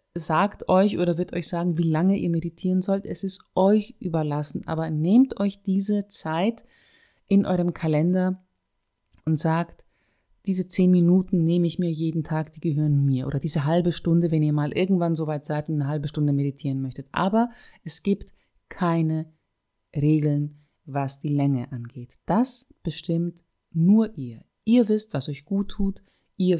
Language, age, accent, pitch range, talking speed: German, 30-49, German, 140-190 Hz, 165 wpm